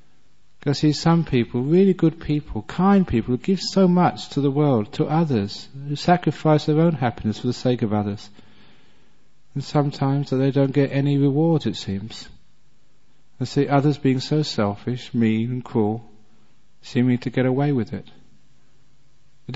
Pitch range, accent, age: 115-150 Hz, British, 40-59